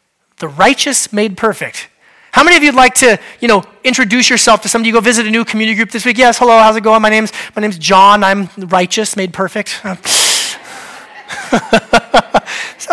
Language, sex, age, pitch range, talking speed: English, male, 30-49, 195-255 Hz, 185 wpm